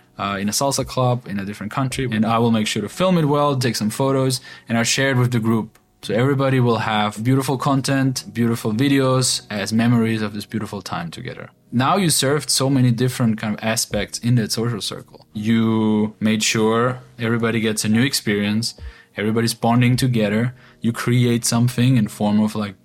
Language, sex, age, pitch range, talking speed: English, male, 20-39, 110-130 Hz, 195 wpm